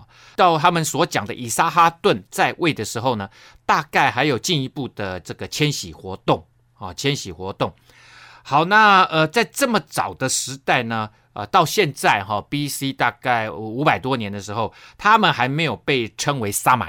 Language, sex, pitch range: Chinese, male, 110-155 Hz